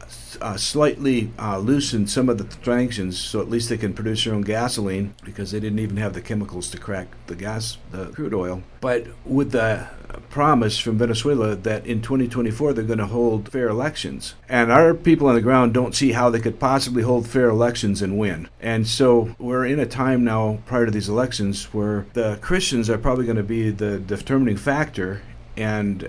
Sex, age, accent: male, 50-69, American